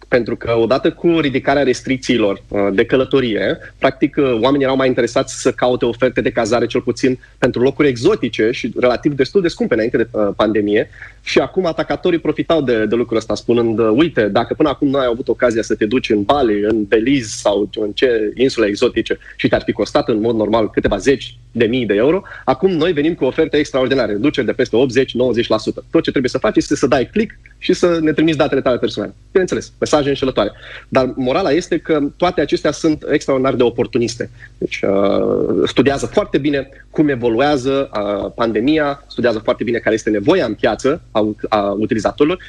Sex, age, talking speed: male, 20-39, 185 wpm